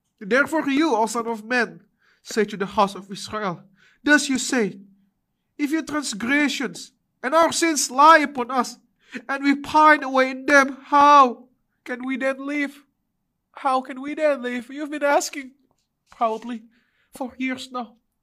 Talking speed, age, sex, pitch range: 160 wpm, 20-39, male, 255-295 Hz